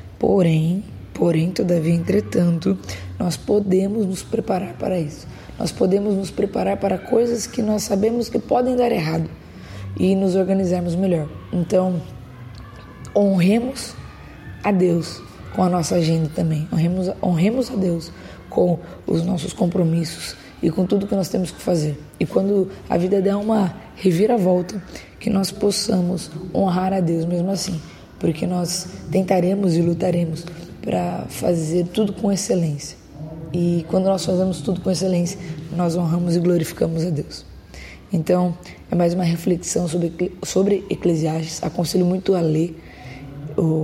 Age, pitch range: 20-39, 165-190 Hz